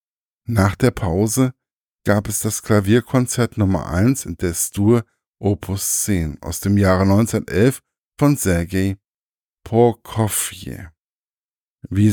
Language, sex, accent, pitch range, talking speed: German, male, German, 95-120 Hz, 110 wpm